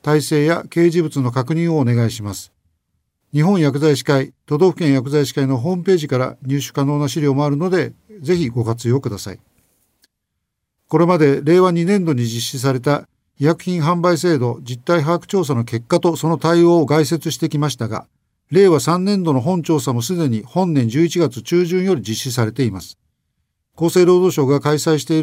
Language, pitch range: Japanese, 130-175 Hz